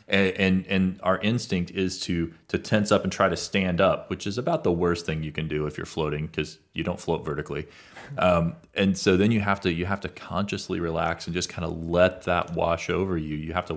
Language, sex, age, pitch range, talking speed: English, male, 30-49, 80-95 Hz, 245 wpm